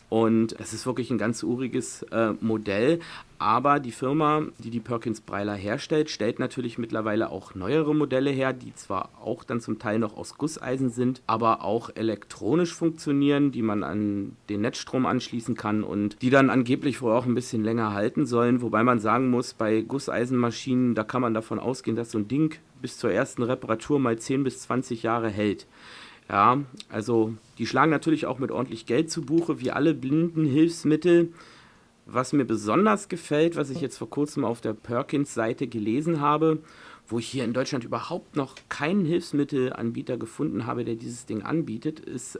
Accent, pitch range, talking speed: German, 115-150 Hz, 180 wpm